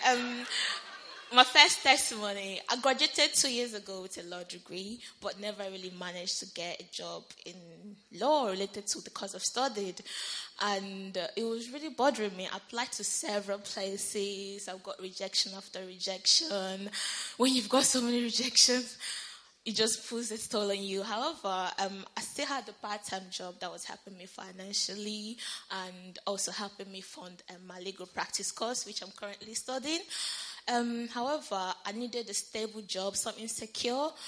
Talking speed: 165 wpm